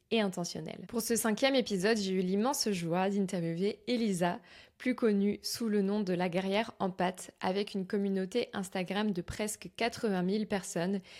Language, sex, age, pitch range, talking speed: French, female, 20-39, 190-220 Hz, 165 wpm